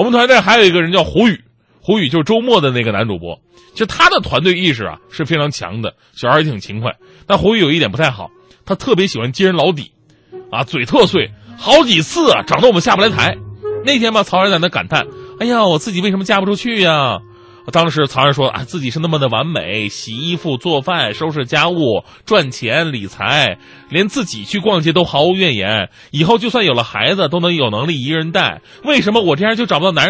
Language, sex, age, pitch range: Chinese, male, 20-39, 130-190 Hz